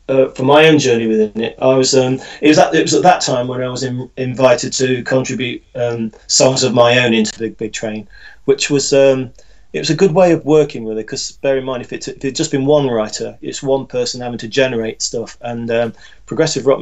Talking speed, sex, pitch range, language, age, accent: 250 wpm, male, 115-140 Hz, English, 30-49, British